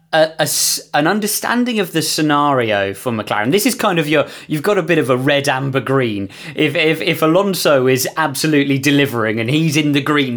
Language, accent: English, British